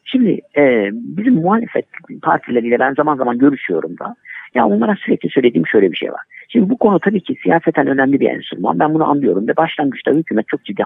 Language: Turkish